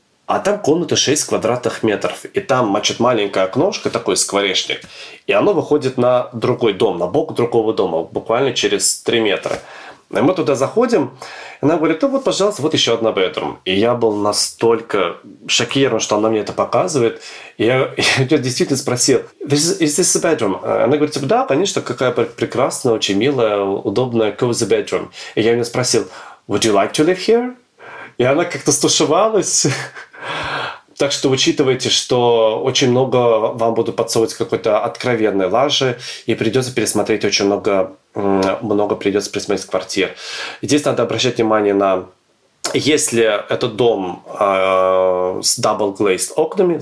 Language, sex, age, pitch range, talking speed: Russian, male, 30-49, 105-145 Hz, 155 wpm